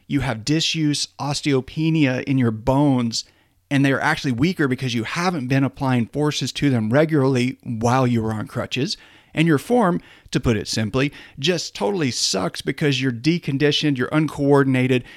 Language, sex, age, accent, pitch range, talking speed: English, male, 40-59, American, 125-160 Hz, 160 wpm